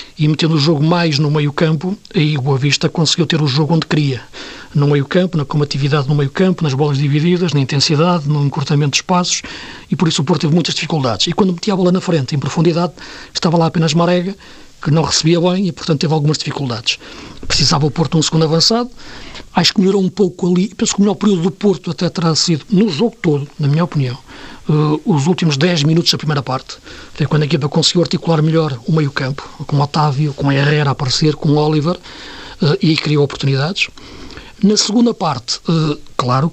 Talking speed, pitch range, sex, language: 205 wpm, 145-180 Hz, male, Portuguese